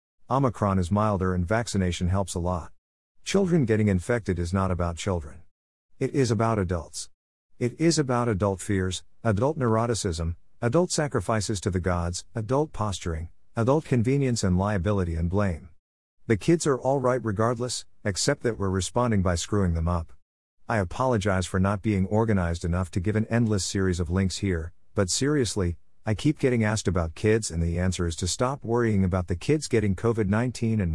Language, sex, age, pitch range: English, male, 50-69, 90-115 Hz